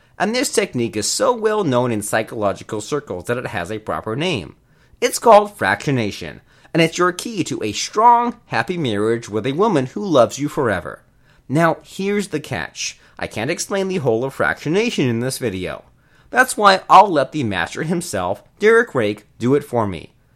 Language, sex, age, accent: English, male, 30-49, American